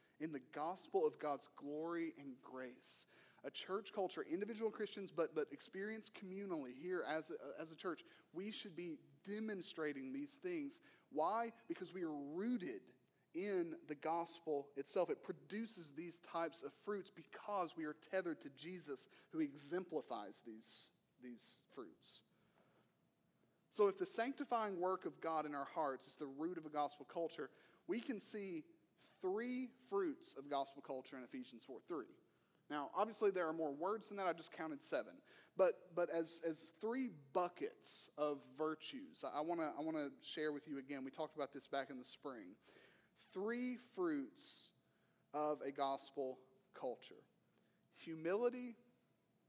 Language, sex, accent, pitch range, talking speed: English, male, American, 150-230 Hz, 155 wpm